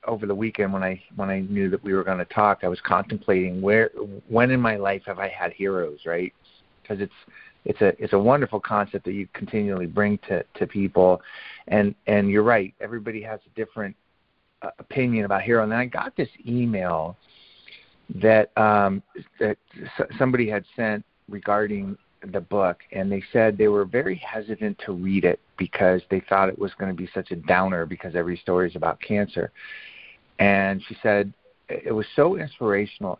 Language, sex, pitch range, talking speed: English, male, 95-115 Hz, 190 wpm